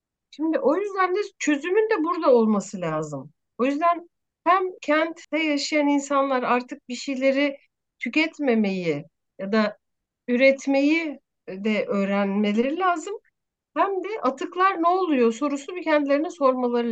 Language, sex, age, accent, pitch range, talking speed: Turkish, female, 60-79, native, 240-325 Hz, 120 wpm